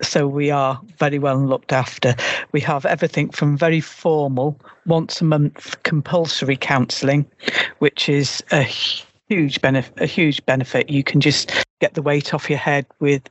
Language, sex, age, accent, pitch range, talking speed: English, female, 50-69, British, 140-170 Hz, 155 wpm